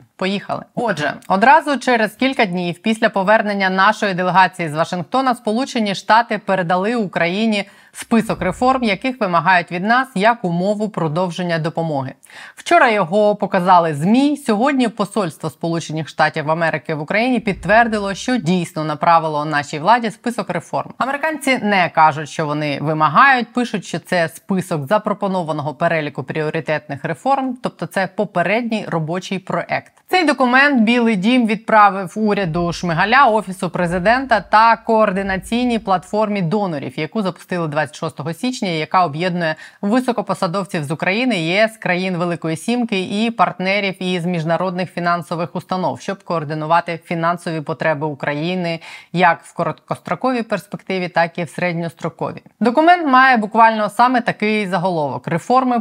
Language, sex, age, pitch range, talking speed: Ukrainian, female, 20-39, 170-220 Hz, 125 wpm